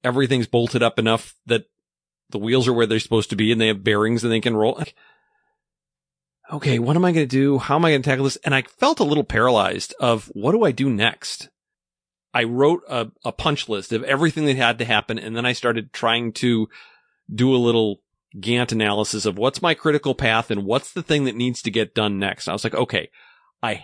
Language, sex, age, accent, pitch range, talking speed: English, male, 40-59, American, 110-135 Hz, 225 wpm